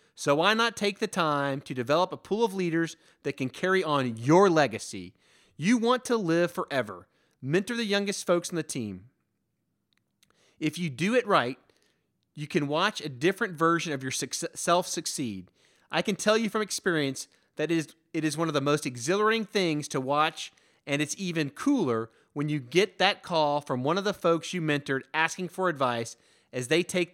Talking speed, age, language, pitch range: 185 wpm, 30-49, English, 140-195 Hz